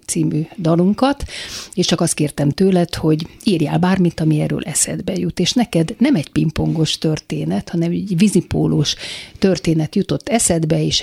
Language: Hungarian